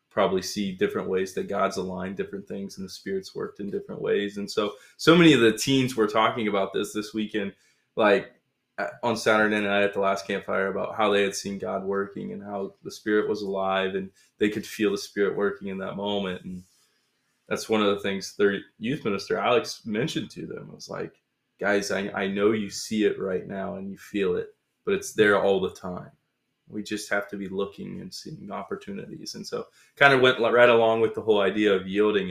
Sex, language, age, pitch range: male, English, 20-39, 95-110 Hz